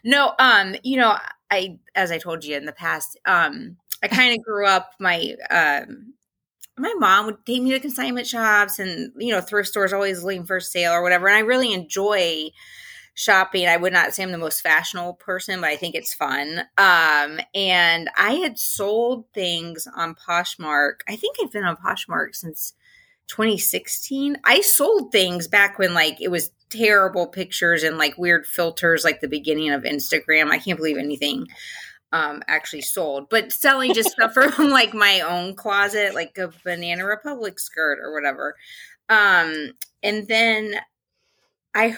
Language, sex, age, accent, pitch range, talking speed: English, female, 30-49, American, 170-225 Hz, 170 wpm